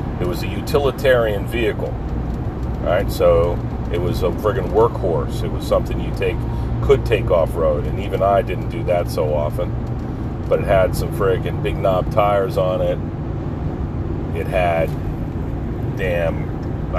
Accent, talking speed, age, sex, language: American, 150 wpm, 40-59, male, English